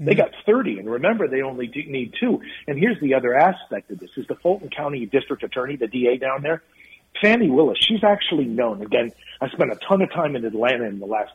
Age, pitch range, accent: 50-69, 120-170 Hz, American